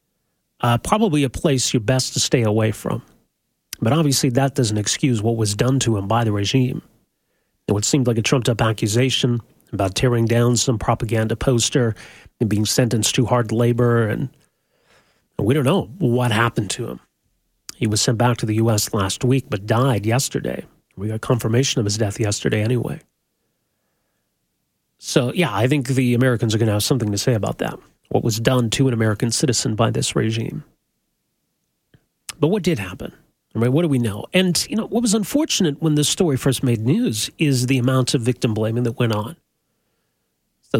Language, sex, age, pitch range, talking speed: English, male, 40-59, 110-130 Hz, 190 wpm